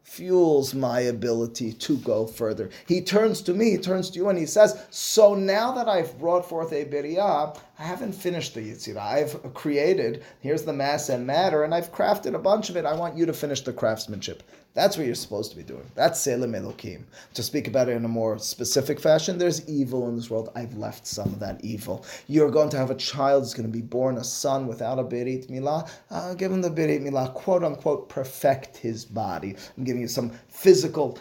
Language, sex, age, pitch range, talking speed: English, male, 30-49, 115-165 Hz, 215 wpm